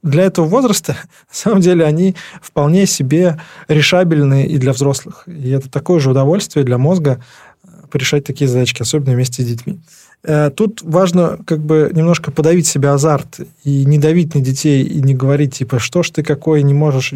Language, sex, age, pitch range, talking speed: Russian, male, 20-39, 135-175 Hz, 175 wpm